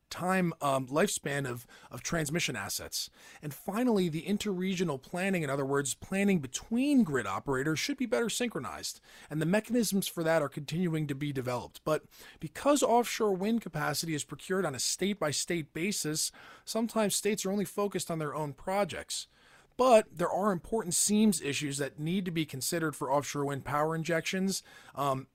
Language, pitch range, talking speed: English, 150-195 Hz, 165 wpm